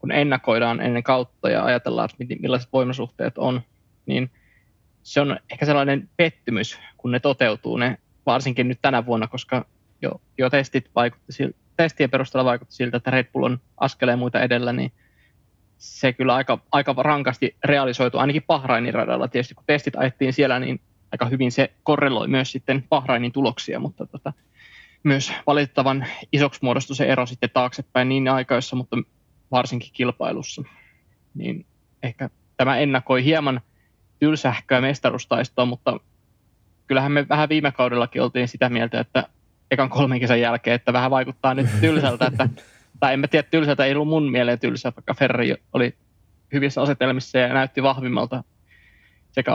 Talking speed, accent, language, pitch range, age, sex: 150 wpm, native, Finnish, 120-140 Hz, 20-39, male